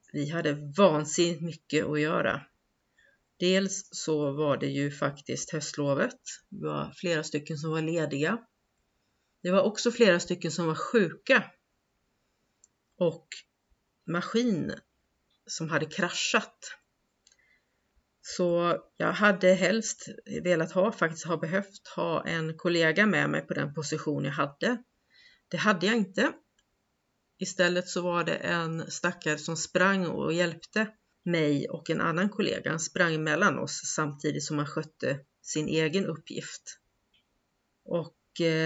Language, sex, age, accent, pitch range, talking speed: Swedish, female, 40-59, native, 155-190 Hz, 125 wpm